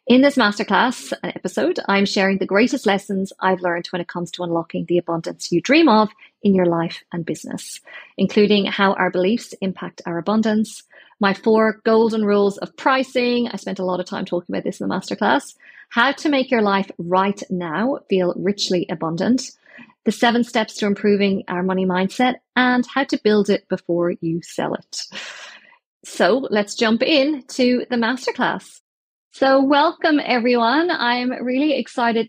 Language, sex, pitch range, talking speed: English, female, 195-250 Hz, 170 wpm